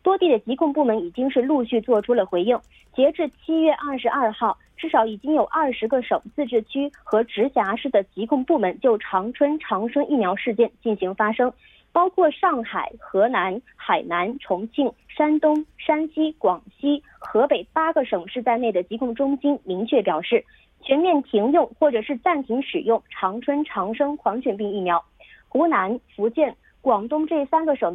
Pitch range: 225-305 Hz